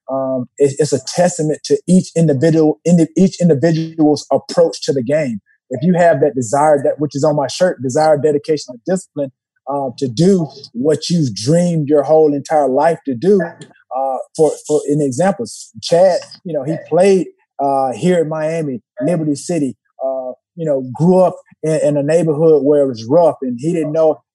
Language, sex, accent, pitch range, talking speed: English, male, American, 145-175 Hz, 180 wpm